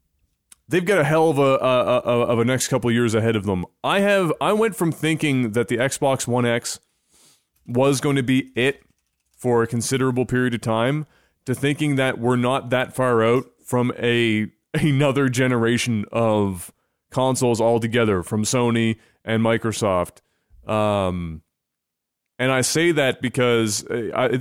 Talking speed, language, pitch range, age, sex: 165 wpm, English, 115-140 Hz, 30-49, male